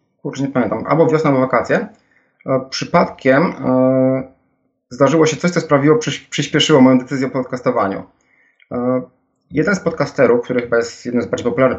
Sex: male